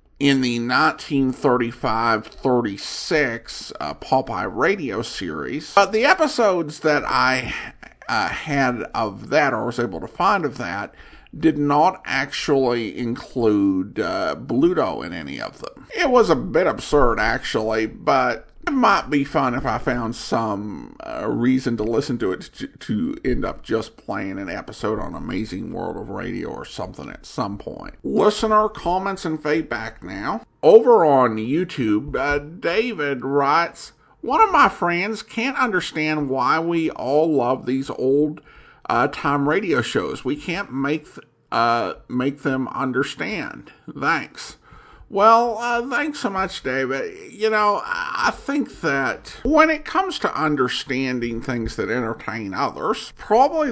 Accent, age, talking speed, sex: American, 50-69, 140 wpm, male